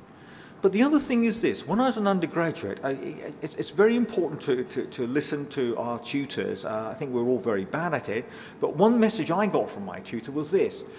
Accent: British